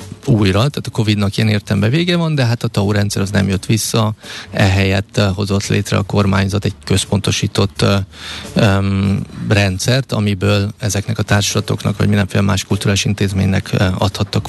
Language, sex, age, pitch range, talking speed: Hungarian, male, 30-49, 100-110 Hz, 145 wpm